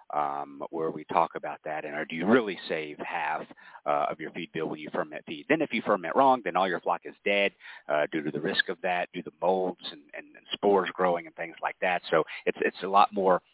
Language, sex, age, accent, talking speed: English, male, 50-69, American, 260 wpm